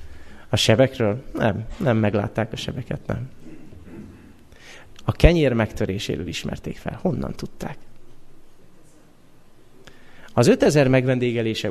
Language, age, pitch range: Hungarian, 30-49, 100-140 Hz